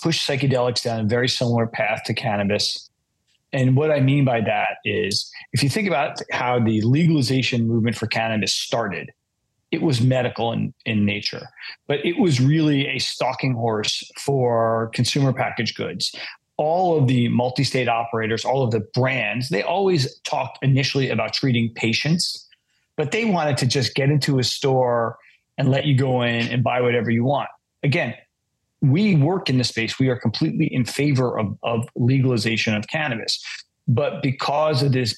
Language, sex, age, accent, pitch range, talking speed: English, male, 40-59, American, 120-145 Hz, 170 wpm